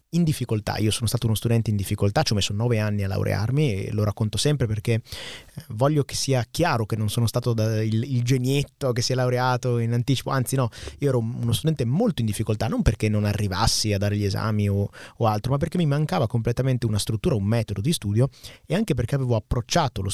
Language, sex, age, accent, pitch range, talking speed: Italian, male, 30-49, native, 105-130 Hz, 225 wpm